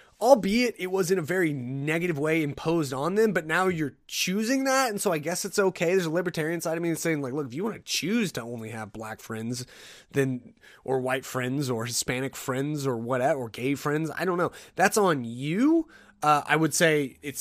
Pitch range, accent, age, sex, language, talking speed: 135-185 Hz, American, 30-49, male, English, 220 wpm